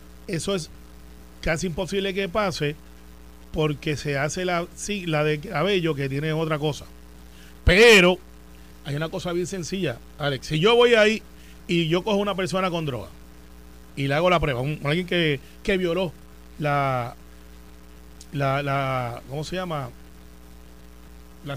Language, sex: Spanish, male